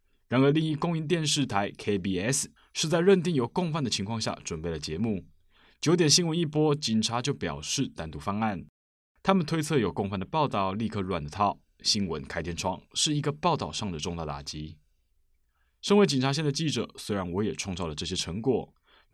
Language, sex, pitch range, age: Chinese, male, 90-145 Hz, 20-39